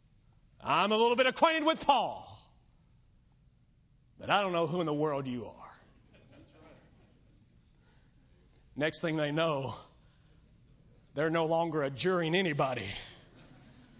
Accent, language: American, English